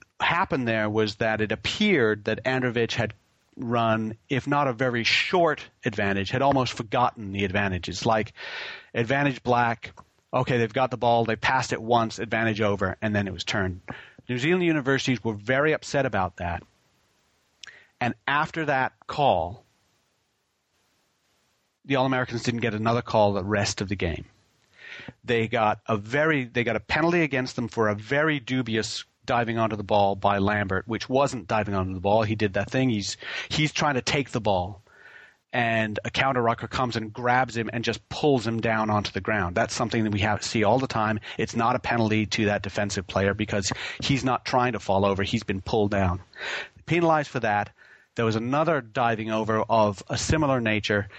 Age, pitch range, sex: 40-59, 105-130 Hz, male